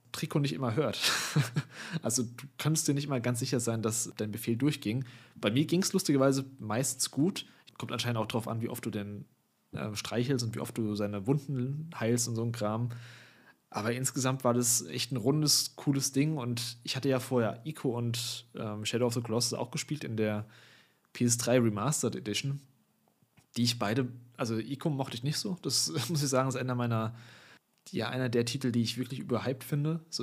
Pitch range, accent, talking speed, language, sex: 115-135 Hz, German, 200 wpm, German, male